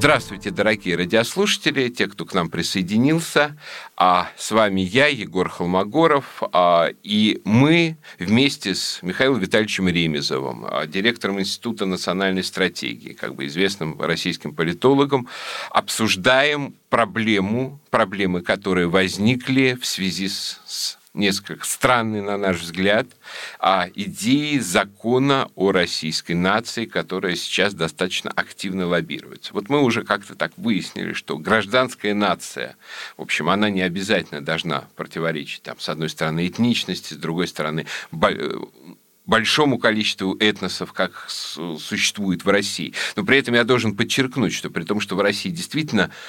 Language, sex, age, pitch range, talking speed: Russian, male, 50-69, 95-125 Hz, 130 wpm